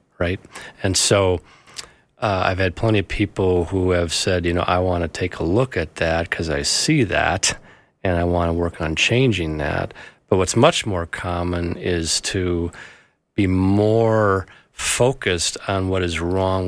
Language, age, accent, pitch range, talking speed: English, 40-59, American, 85-100 Hz, 175 wpm